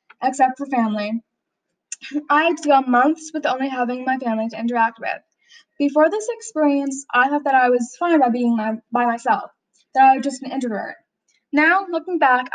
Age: 10-29